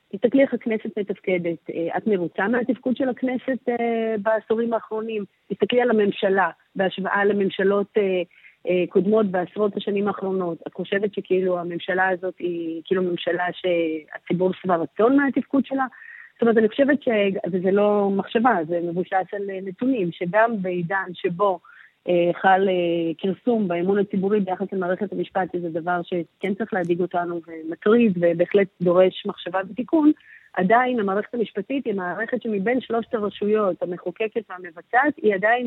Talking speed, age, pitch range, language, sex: 135 wpm, 30-49, 185-225 Hz, Hebrew, female